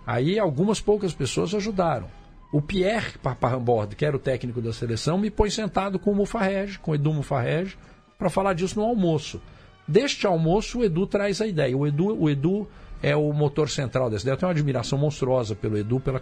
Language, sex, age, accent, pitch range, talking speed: Portuguese, male, 50-69, Brazilian, 115-185 Hz, 185 wpm